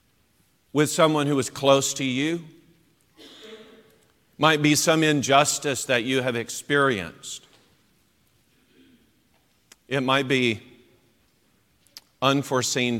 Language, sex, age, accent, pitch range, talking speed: English, male, 50-69, American, 115-145 Hz, 90 wpm